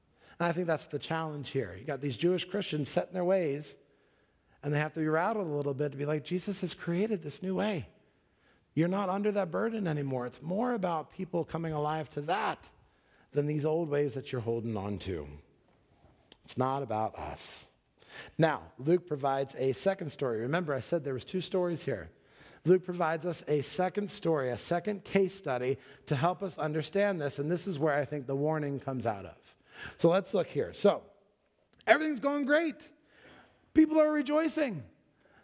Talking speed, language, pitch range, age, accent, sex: 190 wpm, English, 145-190 Hz, 50-69, American, male